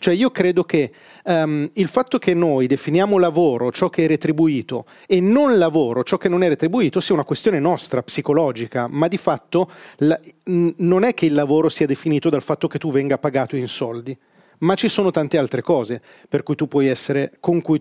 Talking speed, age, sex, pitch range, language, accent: 180 wpm, 30-49, male, 140-195 Hz, Italian, native